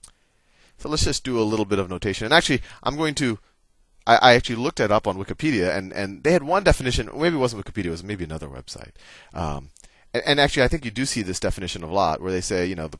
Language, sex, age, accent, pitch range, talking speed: English, male, 30-49, American, 85-120 Hz, 260 wpm